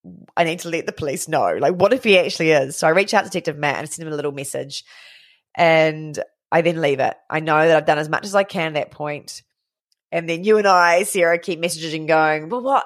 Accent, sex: Australian, female